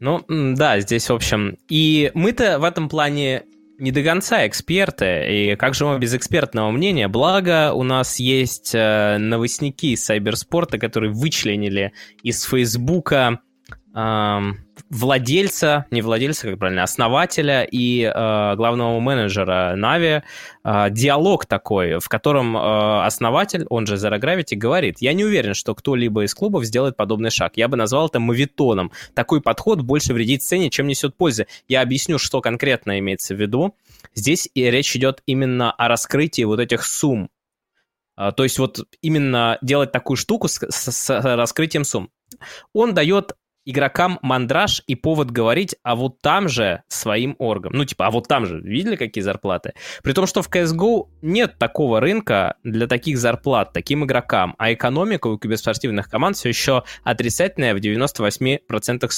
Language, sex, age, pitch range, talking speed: Russian, male, 20-39, 110-145 Hz, 155 wpm